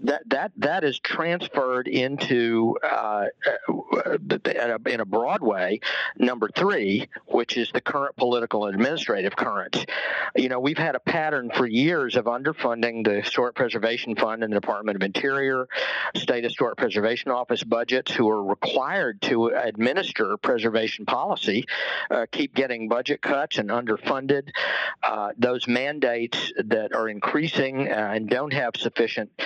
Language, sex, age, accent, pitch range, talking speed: English, male, 50-69, American, 110-135 Hz, 140 wpm